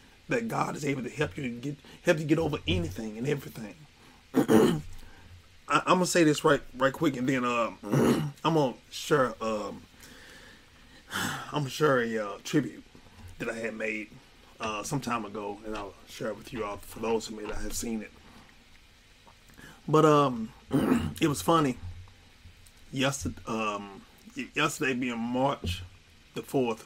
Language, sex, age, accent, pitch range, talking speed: English, male, 30-49, American, 90-130 Hz, 160 wpm